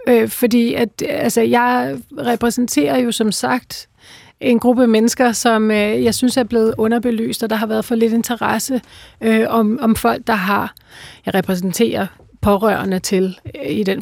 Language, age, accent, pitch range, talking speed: Danish, 40-59, native, 215-245 Hz, 165 wpm